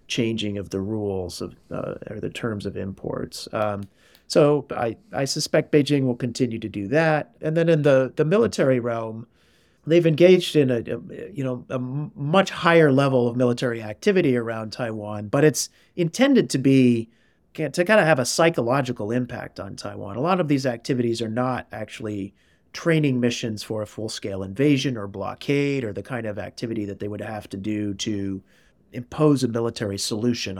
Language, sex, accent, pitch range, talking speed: English, male, American, 105-150 Hz, 180 wpm